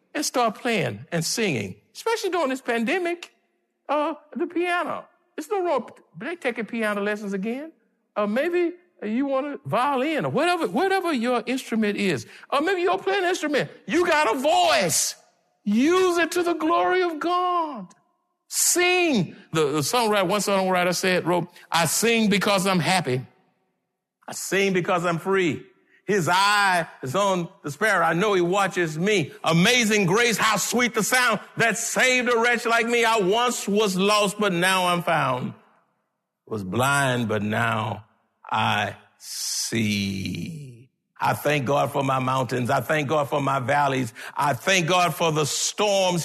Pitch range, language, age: 170-265 Hz, English, 60-79